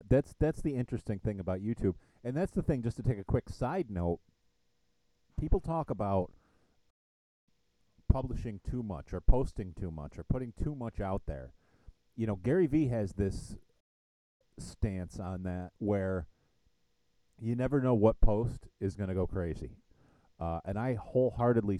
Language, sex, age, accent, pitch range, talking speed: English, male, 40-59, American, 90-120 Hz, 160 wpm